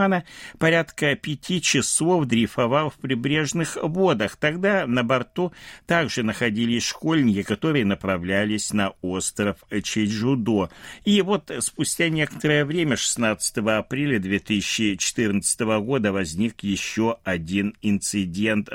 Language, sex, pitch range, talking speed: Russian, male, 105-140 Hz, 100 wpm